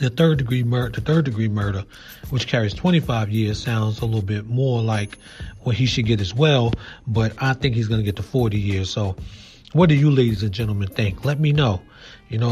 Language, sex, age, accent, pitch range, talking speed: English, male, 30-49, American, 110-130 Hz, 210 wpm